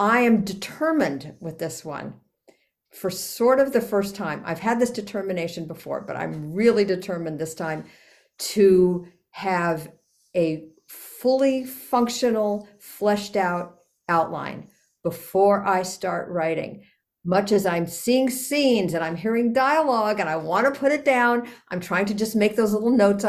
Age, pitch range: 50-69, 165-210 Hz